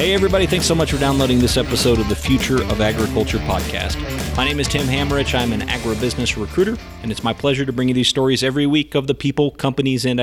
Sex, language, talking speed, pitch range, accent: male, English, 235 wpm, 105-130 Hz, American